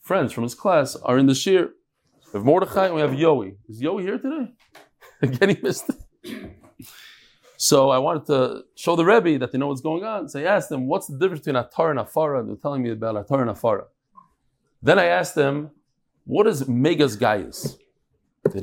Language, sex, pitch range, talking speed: English, male, 125-175 Hz, 205 wpm